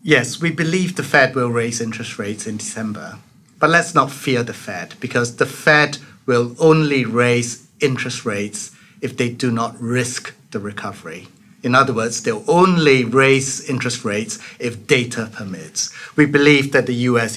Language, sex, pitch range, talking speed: English, male, 110-135 Hz, 165 wpm